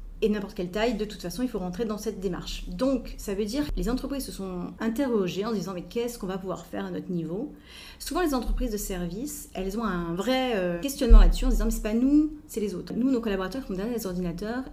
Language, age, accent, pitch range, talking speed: French, 30-49, French, 180-230 Hz, 255 wpm